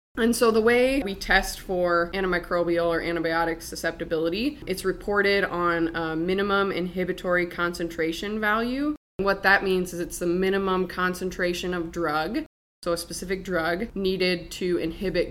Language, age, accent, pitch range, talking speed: English, 20-39, American, 170-195 Hz, 140 wpm